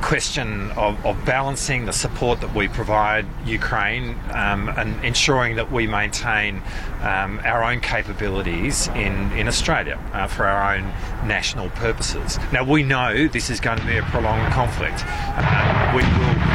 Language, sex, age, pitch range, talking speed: Arabic, male, 30-49, 105-125 Hz, 155 wpm